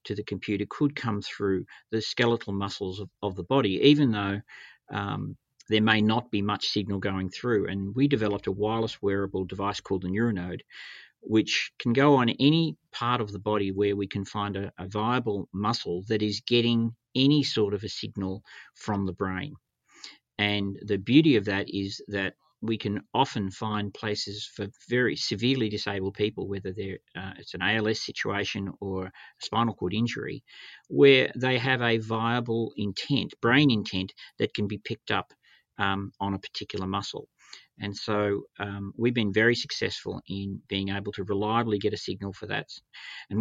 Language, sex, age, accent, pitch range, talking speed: English, male, 50-69, Australian, 100-115 Hz, 175 wpm